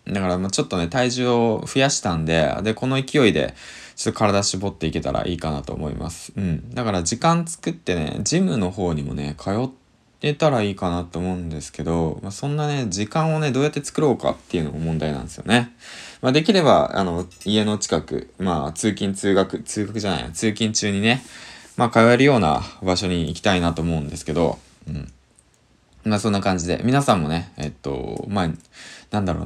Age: 20-39